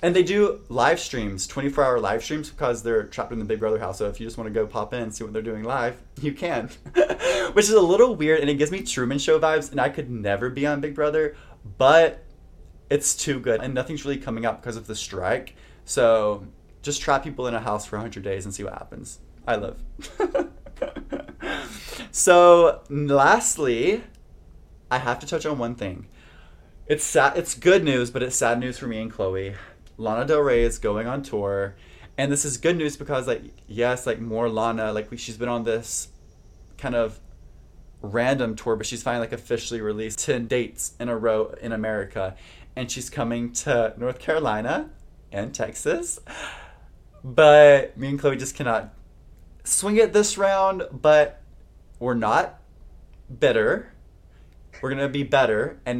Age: 20-39